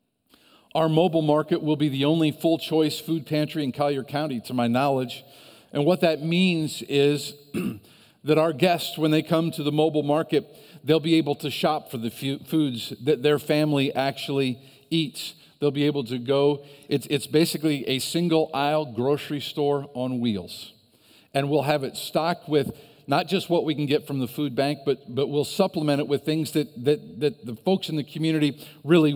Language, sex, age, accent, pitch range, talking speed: English, male, 50-69, American, 135-160 Hz, 185 wpm